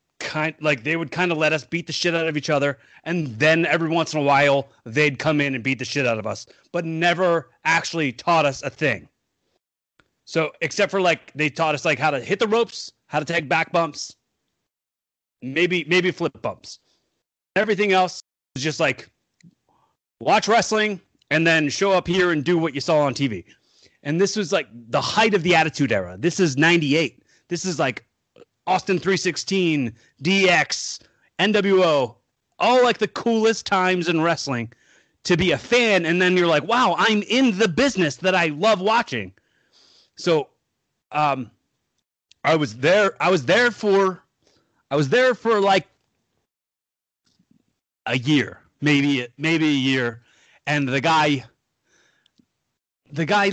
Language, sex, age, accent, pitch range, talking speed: English, male, 30-49, American, 145-185 Hz, 165 wpm